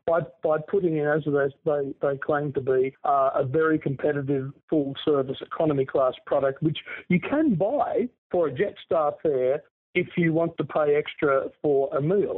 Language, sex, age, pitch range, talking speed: English, male, 50-69, 135-170 Hz, 165 wpm